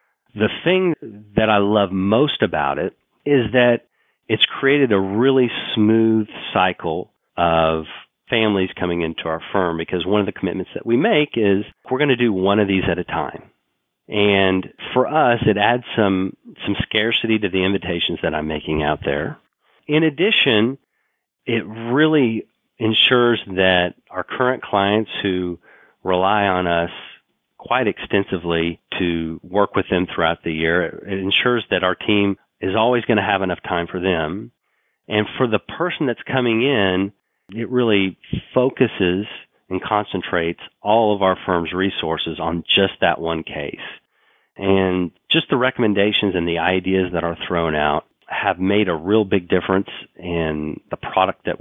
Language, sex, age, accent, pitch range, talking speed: English, male, 40-59, American, 90-110 Hz, 160 wpm